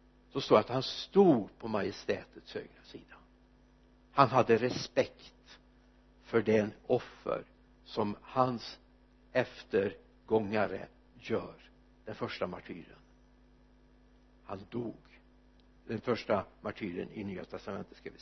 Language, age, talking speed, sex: Swedish, 60-79, 105 wpm, male